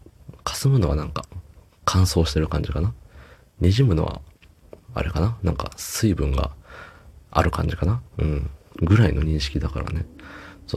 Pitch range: 80-95 Hz